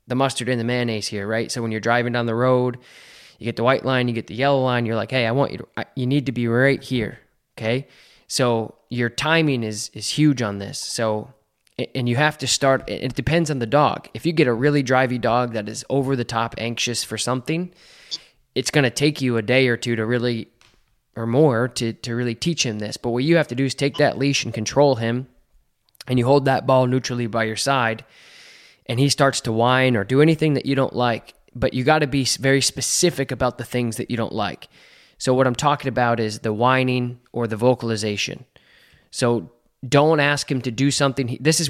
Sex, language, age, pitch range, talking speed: male, English, 20-39, 115-140 Hz, 230 wpm